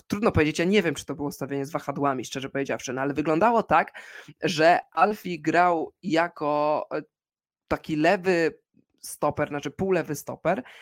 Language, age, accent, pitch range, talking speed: Polish, 20-39, native, 145-180 Hz, 145 wpm